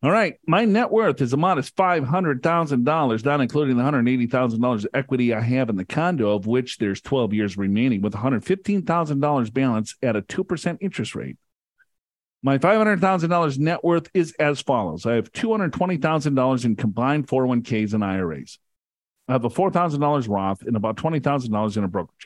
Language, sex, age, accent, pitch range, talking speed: English, male, 40-59, American, 125-175 Hz, 160 wpm